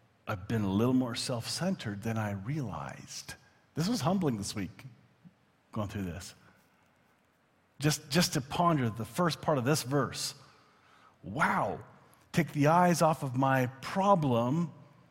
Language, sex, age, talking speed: English, male, 40-59, 140 wpm